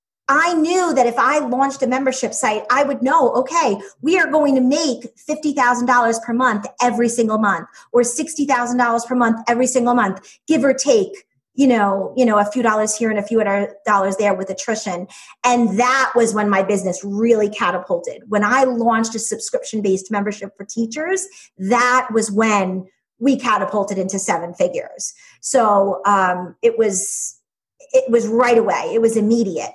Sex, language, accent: female, English, American